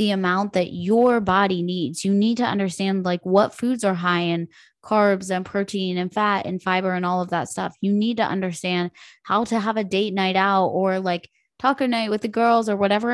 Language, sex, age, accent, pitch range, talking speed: English, female, 20-39, American, 180-220 Hz, 225 wpm